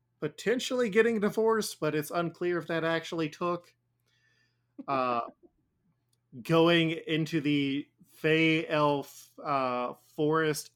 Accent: American